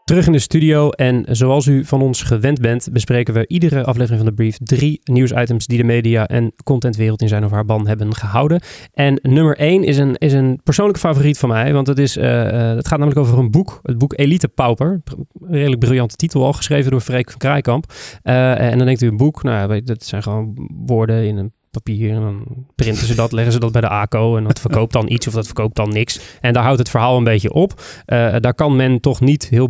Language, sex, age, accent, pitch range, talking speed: Dutch, male, 20-39, Dutch, 120-150 Hz, 240 wpm